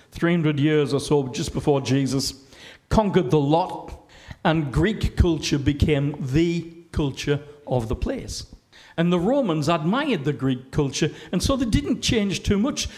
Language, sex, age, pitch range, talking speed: English, male, 50-69, 135-200 Hz, 155 wpm